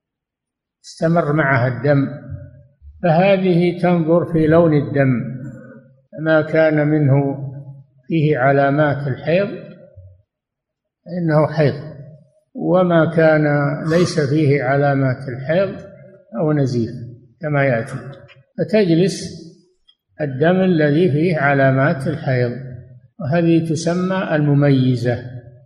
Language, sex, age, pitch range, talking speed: Arabic, male, 60-79, 130-165 Hz, 80 wpm